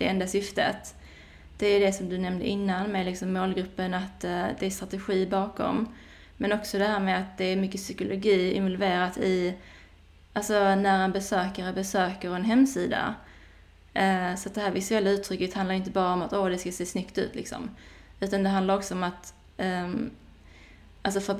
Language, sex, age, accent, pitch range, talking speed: Swedish, female, 20-39, native, 175-200 Hz, 160 wpm